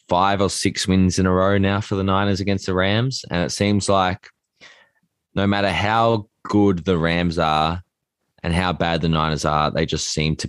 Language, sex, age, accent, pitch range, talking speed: English, male, 20-39, Australian, 80-95 Hz, 200 wpm